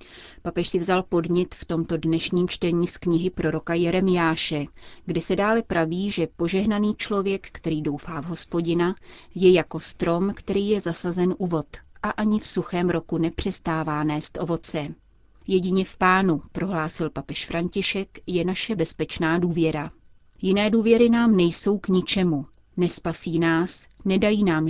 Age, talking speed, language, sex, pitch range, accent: 30-49, 145 wpm, Czech, female, 160-190 Hz, native